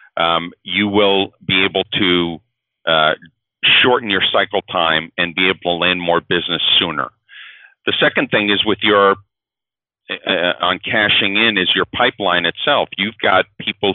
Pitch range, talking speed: 85-105 Hz, 150 wpm